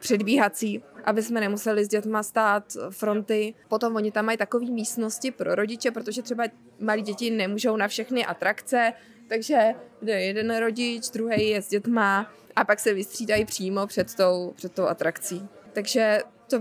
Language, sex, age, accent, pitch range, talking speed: Czech, female, 20-39, native, 210-260 Hz, 155 wpm